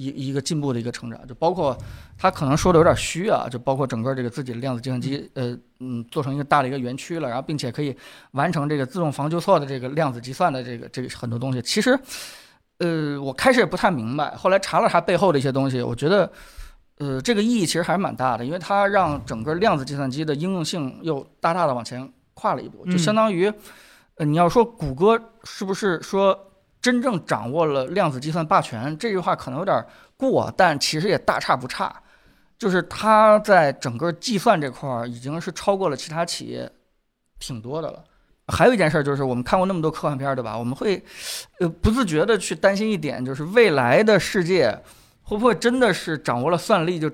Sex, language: male, Chinese